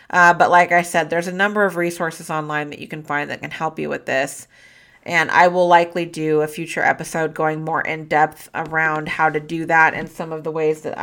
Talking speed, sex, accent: 240 wpm, female, American